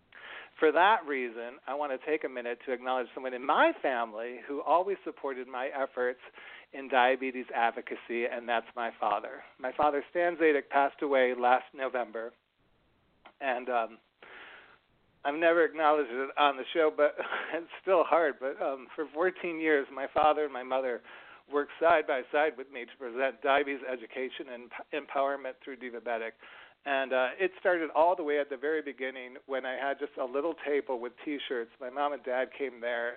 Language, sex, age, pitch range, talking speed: English, male, 40-59, 125-140 Hz, 175 wpm